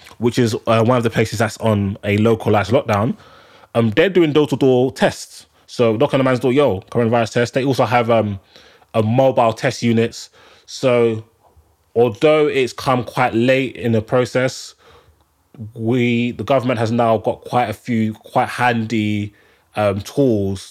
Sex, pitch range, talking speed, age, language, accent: male, 105-125 Hz, 160 wpm, 20-39, English, British